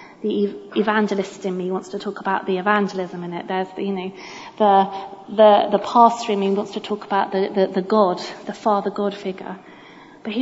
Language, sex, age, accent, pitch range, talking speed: English, female, 30-49, British, 195-230 Hz, 200 wpm